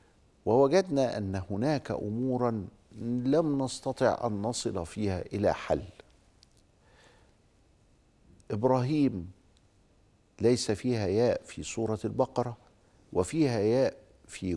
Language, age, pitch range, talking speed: Arabic, 50-69, 100-130 Hz, 85 wpm